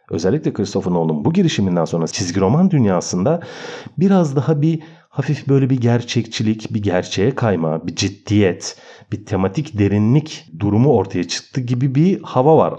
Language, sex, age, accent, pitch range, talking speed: Turkish, male, 40-59, native, 100-155 Hz, 145 wpm